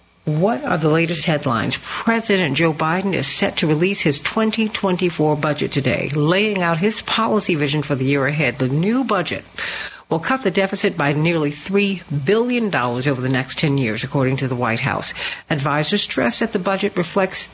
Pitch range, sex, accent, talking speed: 150-200 Hz, female, American, 180 wpm